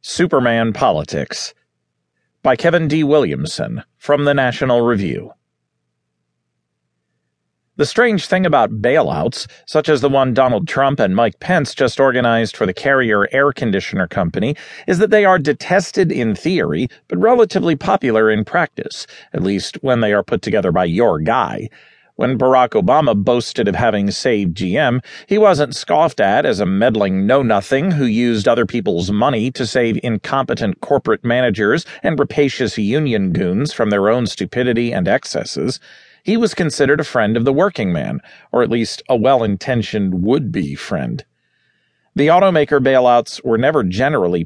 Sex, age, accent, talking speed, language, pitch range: male, 40-59, American, 150 wpm, English, 105-150 Hz